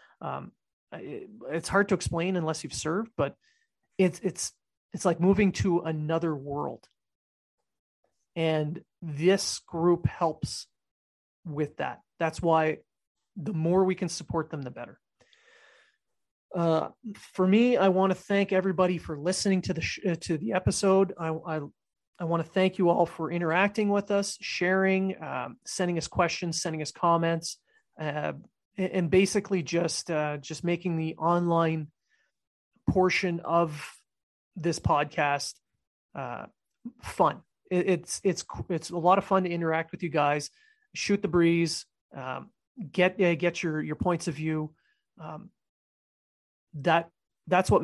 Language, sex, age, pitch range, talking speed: English, male, 30-49, 160-190 Hz, 140 wpm